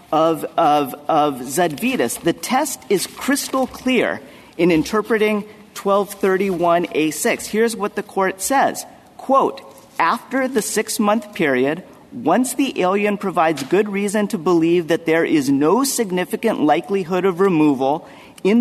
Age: 40-59